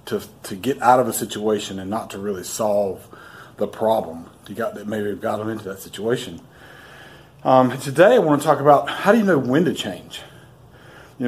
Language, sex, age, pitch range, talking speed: English, male, 40-59, 110-130 Hz, 200 wpm